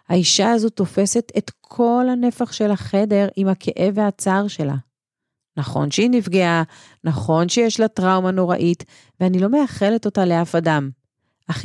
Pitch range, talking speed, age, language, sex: 150-200 Hz, 140 wpm, 40-59, Hebrew, female